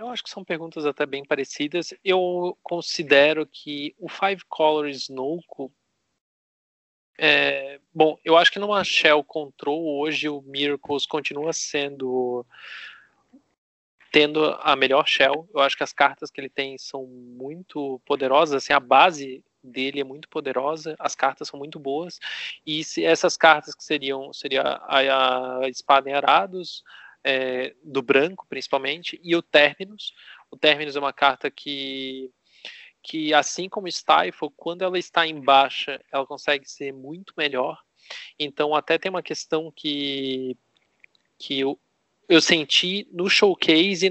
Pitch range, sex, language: 140-170 Hz, male, Portuguese